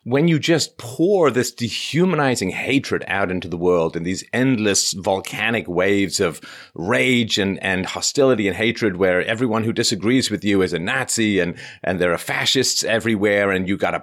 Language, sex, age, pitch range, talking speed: English, male, 30-49, 90-120 Hz, 175 wpm